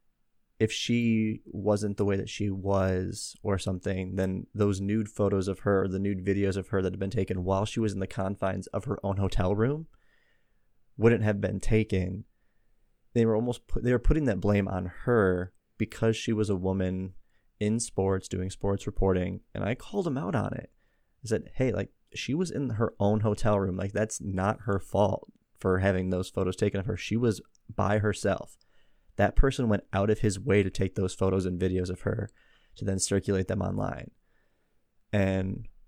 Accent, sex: American, male